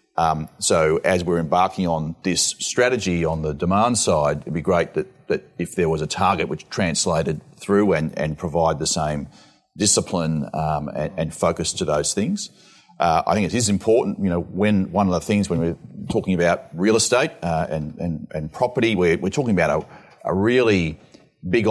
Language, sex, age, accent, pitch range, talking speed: English, male, 40-59, Australian, 80-95 Hz, 195 wpm